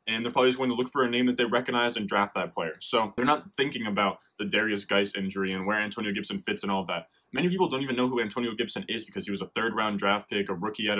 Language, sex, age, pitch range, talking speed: English, male, 20-39, 105-130 Hz, 290 wpm